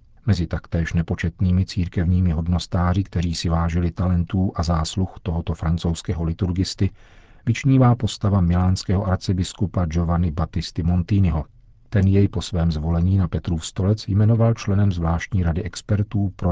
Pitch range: 85-100 Hz